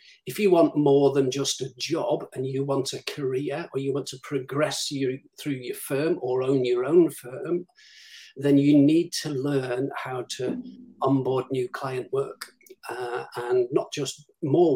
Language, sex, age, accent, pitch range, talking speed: English, male, 40-59, British, 135-195 Hz, 170 wpm